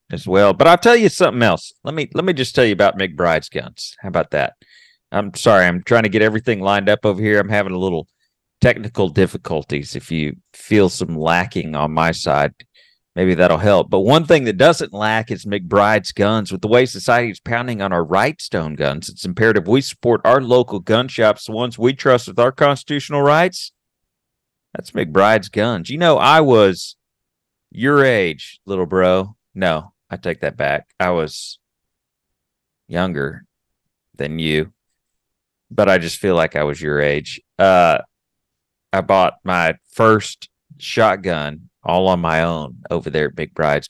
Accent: American